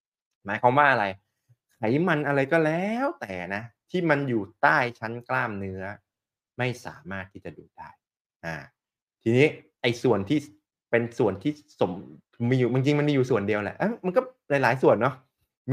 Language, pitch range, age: Thai, 115-165 Hz, 20-39